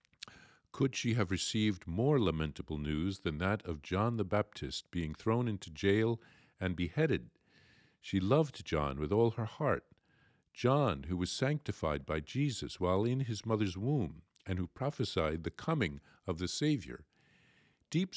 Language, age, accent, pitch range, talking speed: English, 50-69, American, 85-120 Hz, 150 wpm